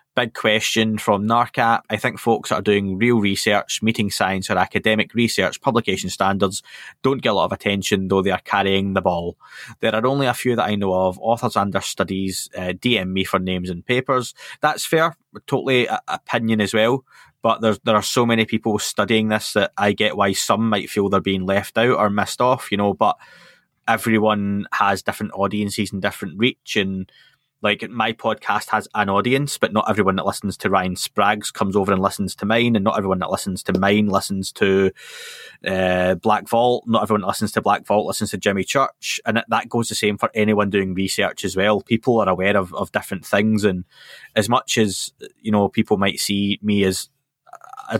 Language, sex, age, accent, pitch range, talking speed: English, male, 20-39, British, 95-115 Hz, 205 wpm